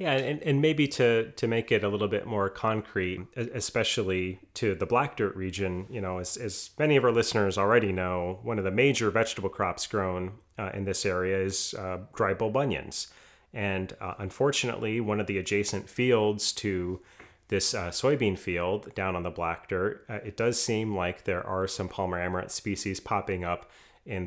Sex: male